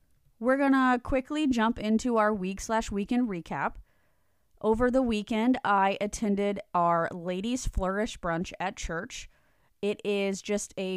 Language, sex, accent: English, female, American